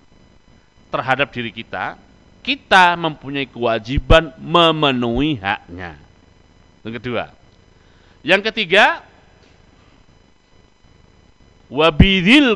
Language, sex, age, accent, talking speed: Indonesian, male, 50-69, native, 60 wpm